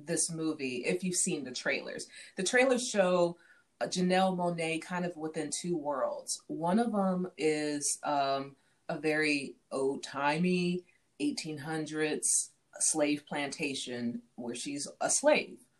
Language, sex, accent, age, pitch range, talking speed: English, female, American, 30-49, 140-175 Hz, 120 wpm